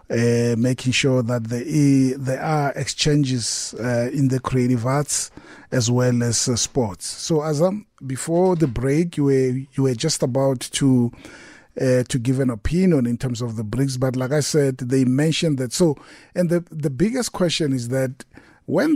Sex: male